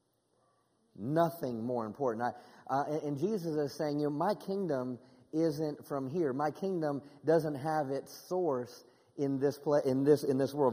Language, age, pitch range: English, 40-59, 140-175 Hz